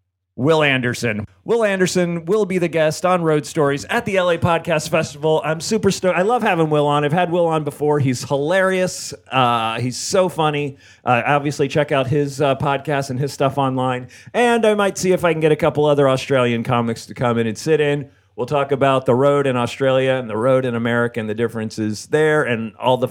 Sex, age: male, 40-59